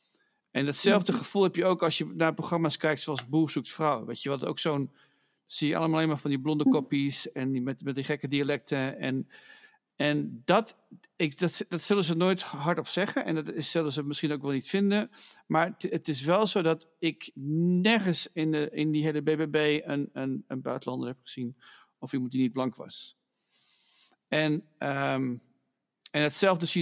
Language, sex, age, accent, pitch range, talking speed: English, male, 50-69, Dutch, 140-170 Hz, 185 wpm